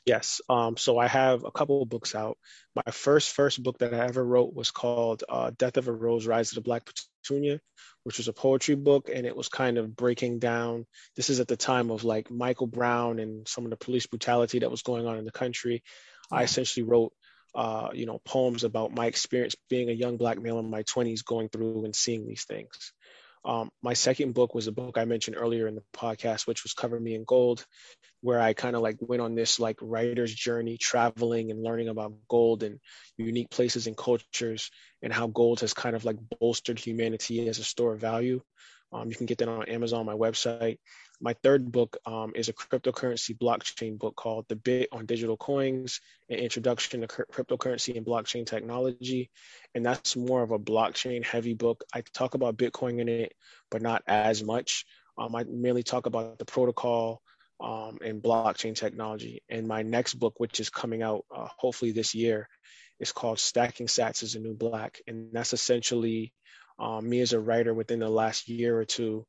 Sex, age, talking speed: male, 20-39, 205 wpm